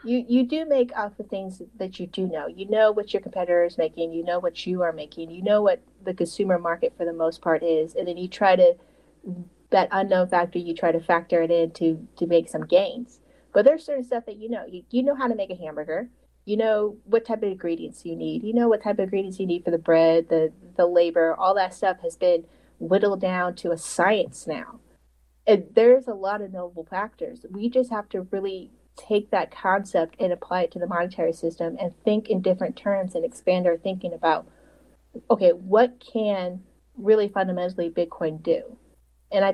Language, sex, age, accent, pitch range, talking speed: English, female, 30-49, American, 170-220 Hz, 215 wpm